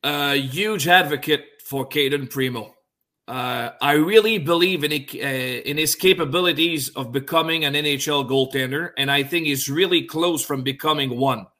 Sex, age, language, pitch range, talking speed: male, 40-59, English, 145-190 Hz, 160 wpm